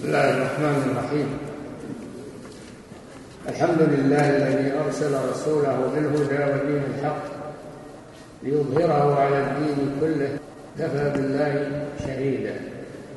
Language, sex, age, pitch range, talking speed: Polish, male, 60-79, 145-160 Hz, 90 wpm